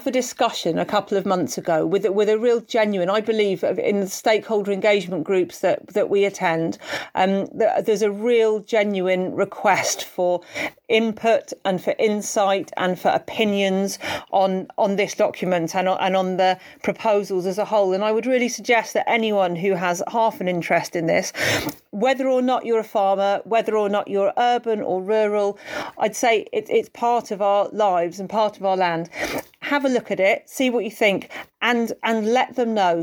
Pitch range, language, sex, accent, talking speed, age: 195-235 Hz, English, female, British, 185 wpm, 40-59